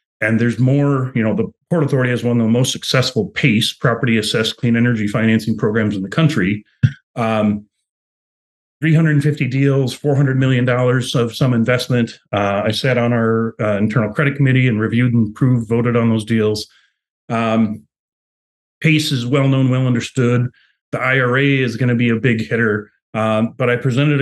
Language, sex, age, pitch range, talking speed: English, male, 30-49, 110-130 Hz, 165 wpm